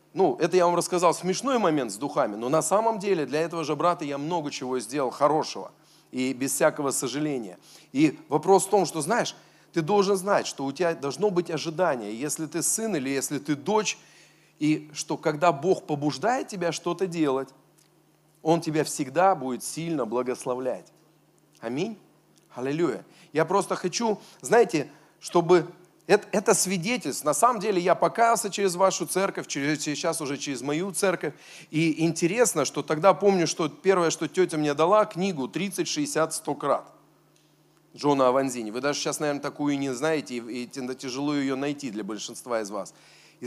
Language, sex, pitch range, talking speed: Russian, male, 145-185 Hz, 165 wpm